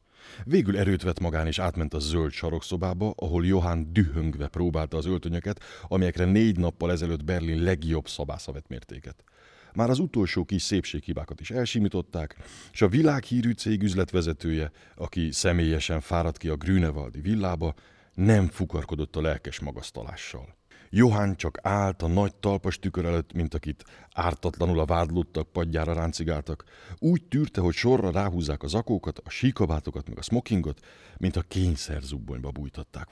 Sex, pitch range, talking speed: male, 80-100 Hz, 140 wpm